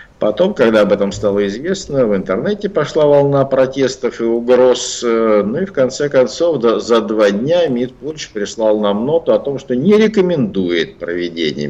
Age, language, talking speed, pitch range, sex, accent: 50-69, Russian, 165 wpm, 100-135 Hz, male, native